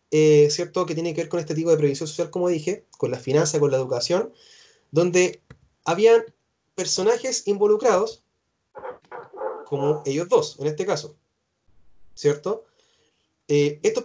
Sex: male